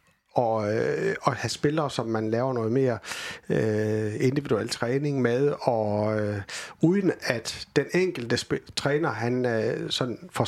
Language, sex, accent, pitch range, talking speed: Danish, male, native, 110-145 Hz, 145 wpm